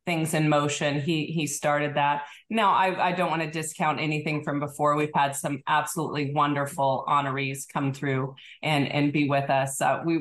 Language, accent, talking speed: English, American, 190 wpm